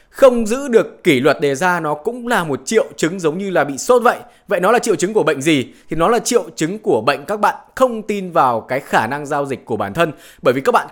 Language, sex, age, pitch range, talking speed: Vietnamese, male, 20-39, 135-210 Hz, 280 wpm